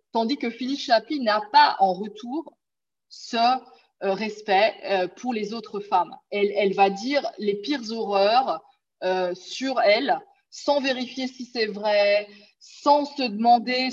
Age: 20-39